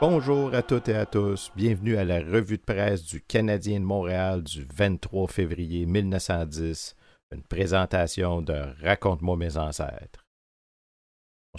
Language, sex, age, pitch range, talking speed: French, male, 50-69, 85-110 Hz, 140 wpm